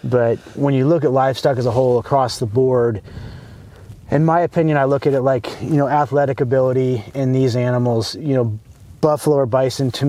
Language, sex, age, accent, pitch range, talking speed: English, male, 30-49, American, 115-135 Hz, 195 wpm